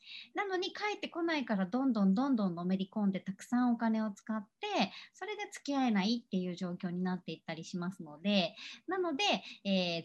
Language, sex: Japanese, male